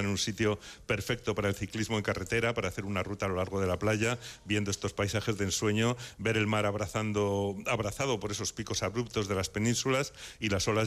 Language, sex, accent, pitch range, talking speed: Spanish, male, Spanish, 100-115 Hz, 215 wpm